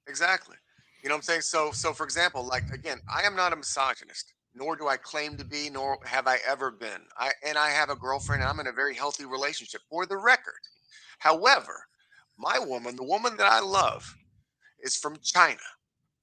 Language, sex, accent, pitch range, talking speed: English, male, American, 130-185 Hz, 205 wpm